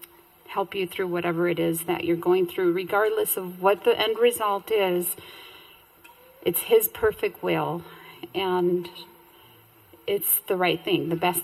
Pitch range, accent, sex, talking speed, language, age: 170-195 Hz, American, female, 140 wpm, English, 40-59